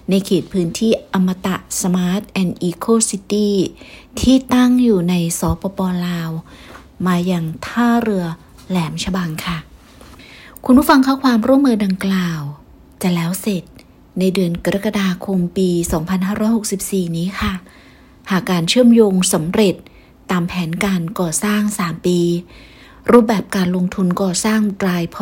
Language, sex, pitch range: Thai, female, 180-210 Hz